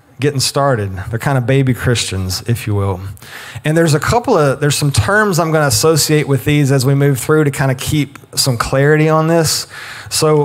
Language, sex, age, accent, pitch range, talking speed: English, male, 30-49, American, 115-145 Hz, 215 wpm